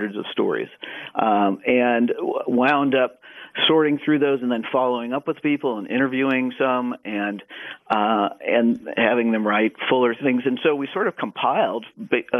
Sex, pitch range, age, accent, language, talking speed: male, 110-135 Hz, 50-69, American, English, 160 wpm